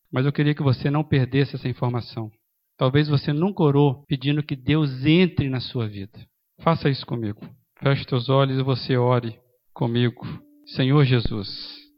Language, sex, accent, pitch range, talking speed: Portuguese, male, Brazilian, 120-140 Hz, 160 wpm